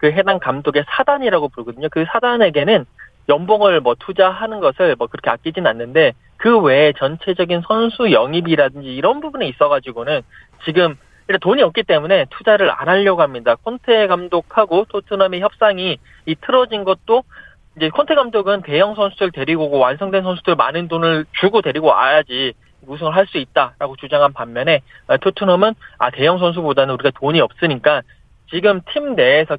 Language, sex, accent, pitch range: Korean, male, native, 145-210 Hz